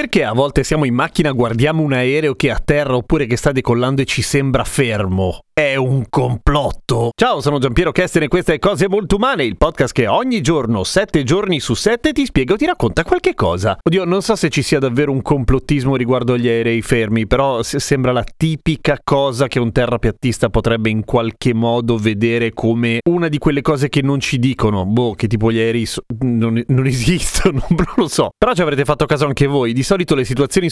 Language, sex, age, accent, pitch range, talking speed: Italian, male, 30-49, native, 120-155 Hz, 210 wpm